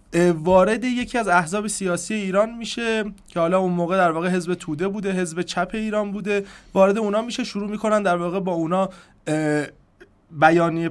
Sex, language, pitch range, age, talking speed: male, Persian, 155-200 Hz, 30-49, 165 wpm